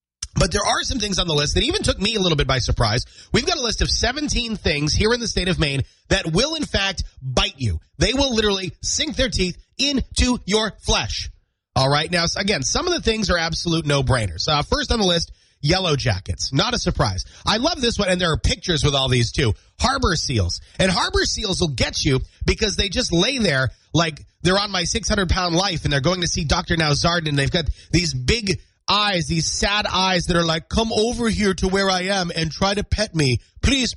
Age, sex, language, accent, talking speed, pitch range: 30-49, male, English, American, 230 wpm, 130-195 Hz